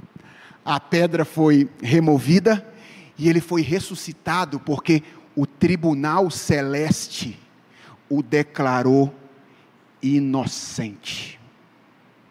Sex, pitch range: male, 145-205 Hz